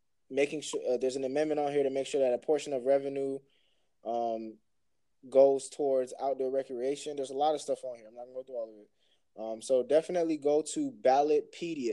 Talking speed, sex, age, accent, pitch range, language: 215 wpm, male, 20-39, American, 120-150 Hz, English